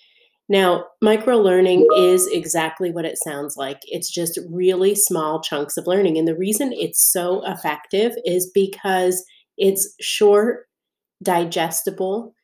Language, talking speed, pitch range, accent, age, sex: English, 130 wpm, 165-210 Hz, American, 30-49, female